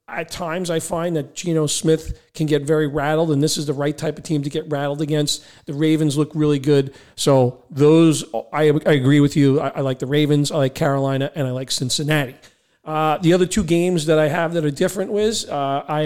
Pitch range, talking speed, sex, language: 150-175 Hz, 230 wpm, male, English